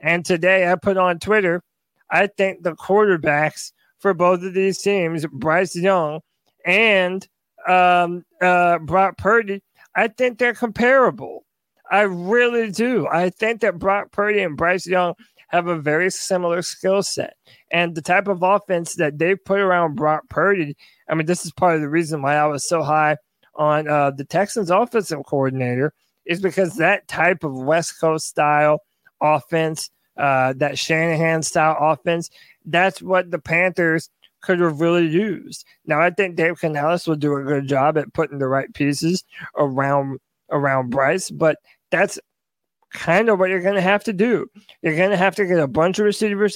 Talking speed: 175 wpm